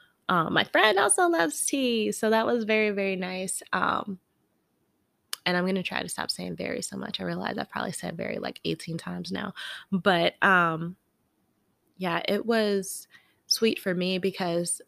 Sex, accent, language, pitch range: female, American, English, 170-200 Hz